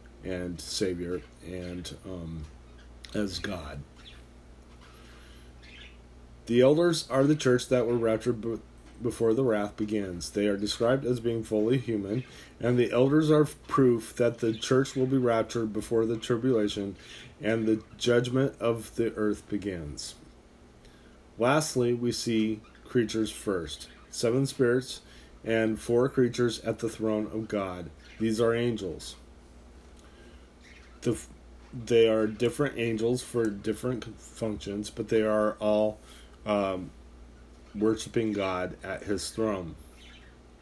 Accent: American